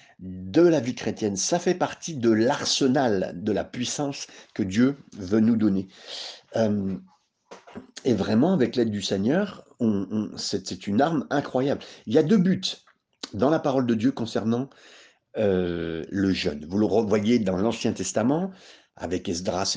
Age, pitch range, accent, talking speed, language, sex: 50-69, 95-130 Hz, French, 160 wpm, French, male